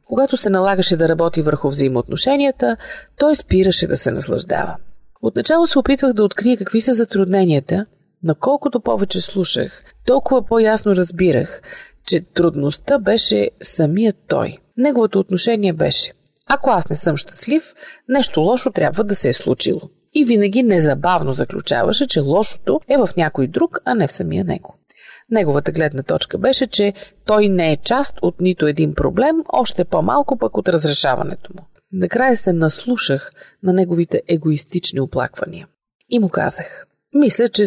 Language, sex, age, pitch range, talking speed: Bulgarian, female, 40-59, 165-245 Hz, 150 wpm